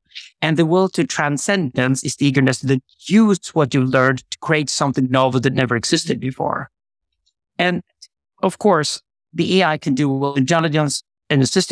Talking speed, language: 170 wpm, English